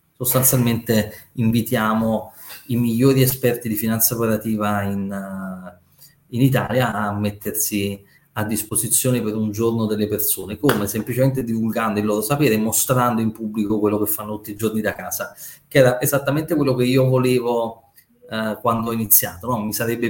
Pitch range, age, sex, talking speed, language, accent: 105-125 Hz, 30-49, male, 160 wpm, Italian, native